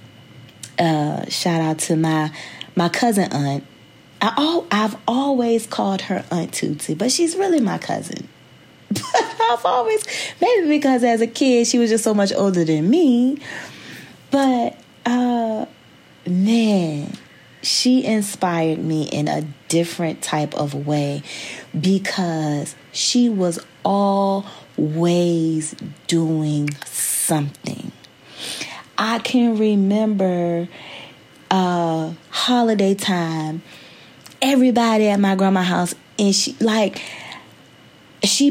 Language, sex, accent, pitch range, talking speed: English, female, American, 170-245 Hz, 110 wpm